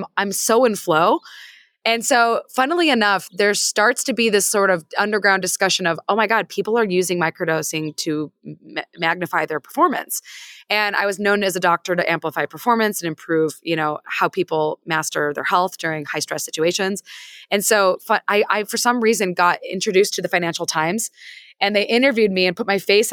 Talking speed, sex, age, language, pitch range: 195 wpm, female, 20-39, English, 165-210 Hz